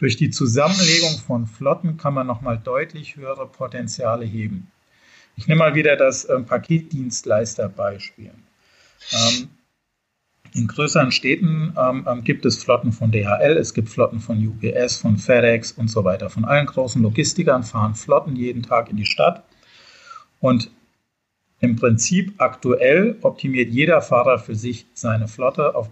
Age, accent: 50-69, German